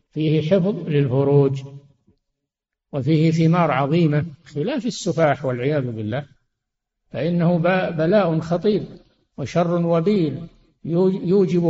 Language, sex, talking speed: Arabic, male, 80 wpm